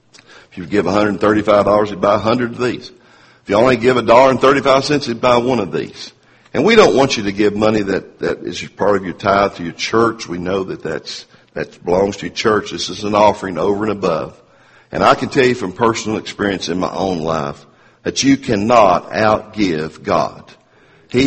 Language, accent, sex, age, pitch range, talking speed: English, American, male, 50-69, 95-120 Hz, 215 wpm